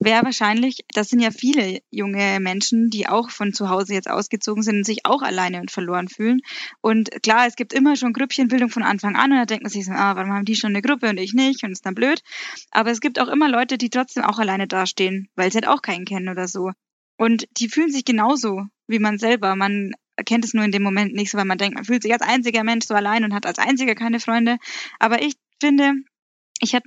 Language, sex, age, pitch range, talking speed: German, female, 10-29, 205-240 Hz, 245 wpm